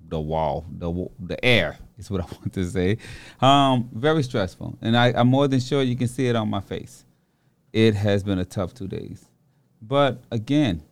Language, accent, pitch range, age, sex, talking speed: English, American, 95-120 Hz, 30-49, male, 200 wpm